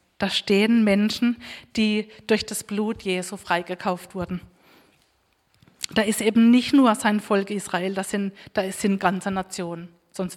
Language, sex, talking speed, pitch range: German, female, 140 wpm, 190-220 Hz